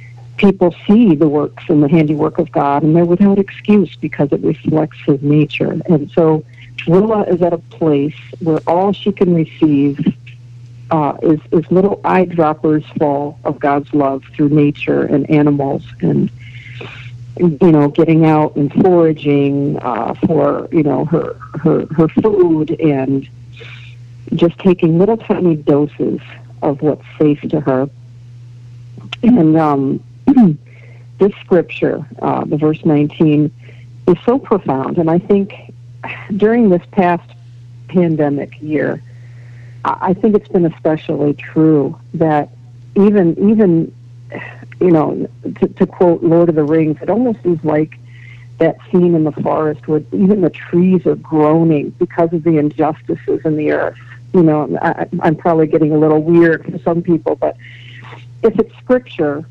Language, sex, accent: English, female, American